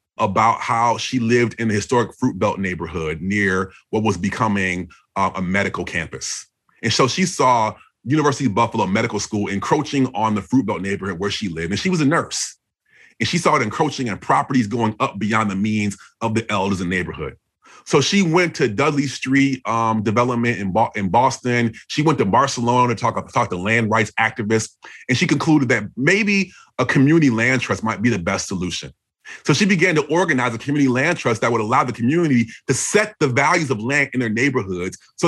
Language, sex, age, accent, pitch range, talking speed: English, male, 30-49, American, 105-145 Hz, 200 wpm